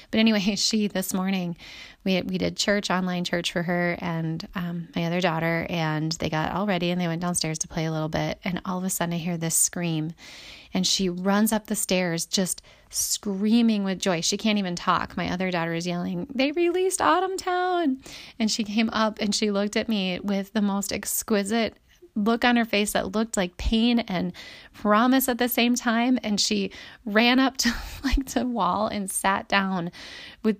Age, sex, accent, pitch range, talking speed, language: 30-49, female, American, 180-220 Hz, 205 wpm, English